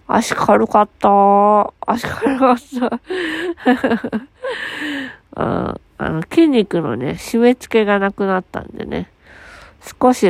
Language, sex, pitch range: Japanese, female, 175-245 Hz